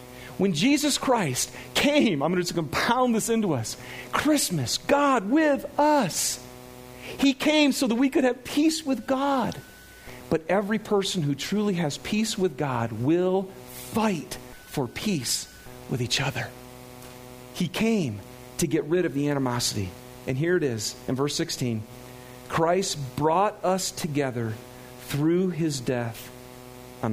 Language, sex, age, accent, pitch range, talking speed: English, male, 40-59, American, 125-165 Hz, 145 wpm